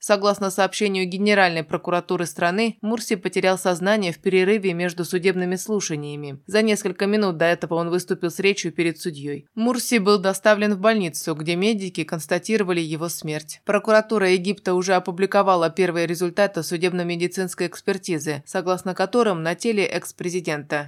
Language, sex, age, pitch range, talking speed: Russian, female, 20-39, 170-205 Hz, 135 wpm